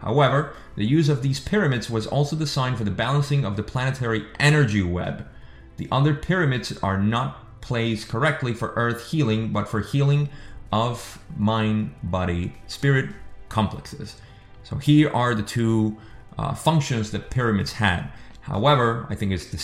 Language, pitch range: English, 100-135 Hz